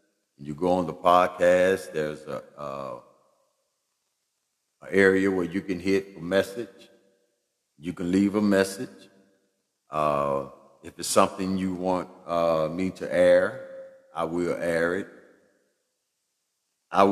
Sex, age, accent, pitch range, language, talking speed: male, 50-69, American, 80-100 Hz, English, 125 wpm